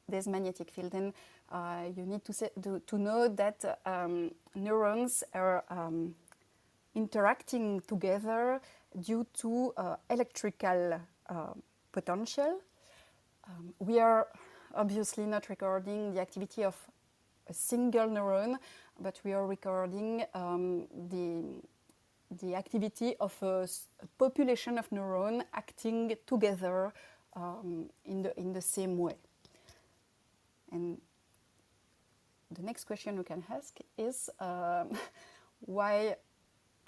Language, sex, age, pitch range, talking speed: English, female, 30-49, 185-225 Hz, 110 wpm